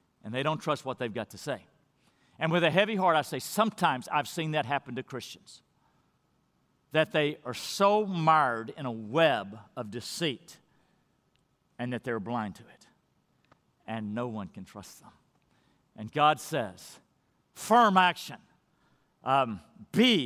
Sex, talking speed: male, 155 wpm